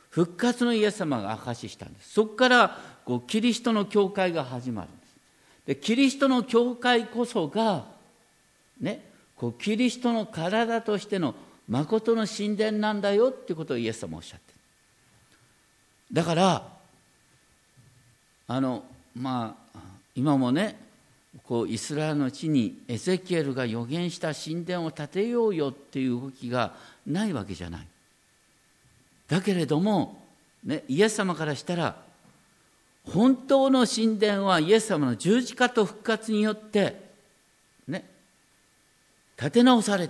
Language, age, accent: Japanese, 50-69, native